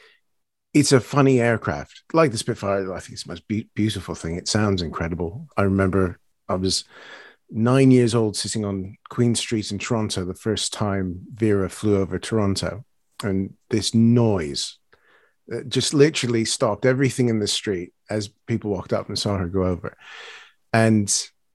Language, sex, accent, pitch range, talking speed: English, male, British, 95-120 Hz, 160 wpm